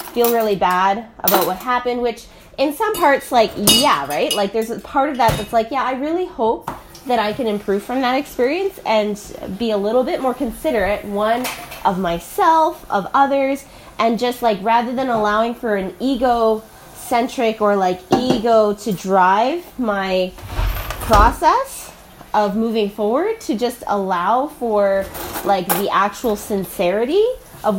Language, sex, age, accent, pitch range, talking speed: English, female, 20-39, American, 205-275 Hz, 160 wpm